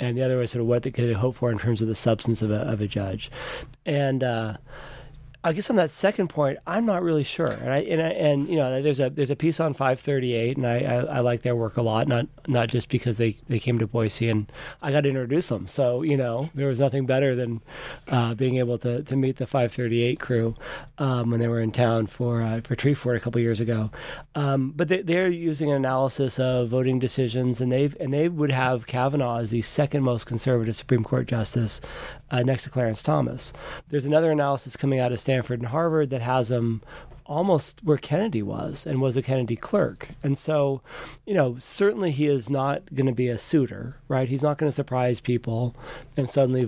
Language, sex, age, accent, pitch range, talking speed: English, male, 30-49, American, 120-145 Hz, 230 wpm